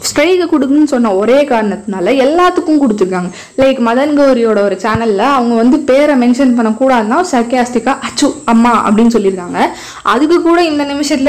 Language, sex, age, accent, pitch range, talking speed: Tamil, female, 20-39, native, 220-285 Hz, 145 wpm